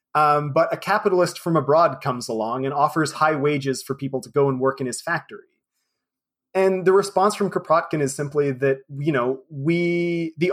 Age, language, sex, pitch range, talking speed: 30-49, English, male, 140-175 Hz, 190 wpm